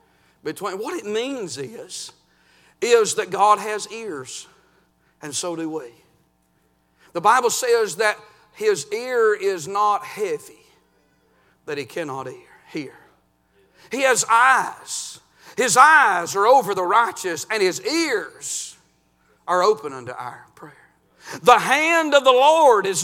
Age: 50-69